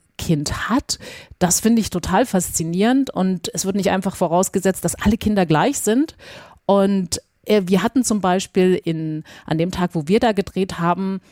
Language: German